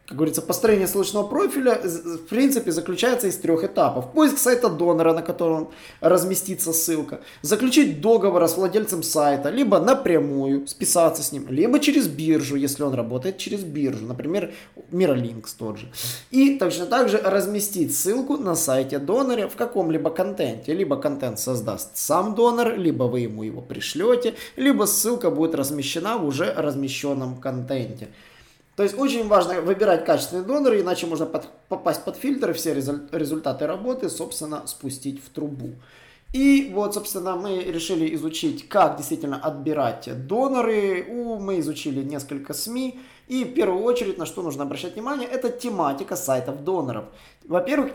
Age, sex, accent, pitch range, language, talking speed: 20-39, male, native, 145-225 Hz, Russian, 145 wpm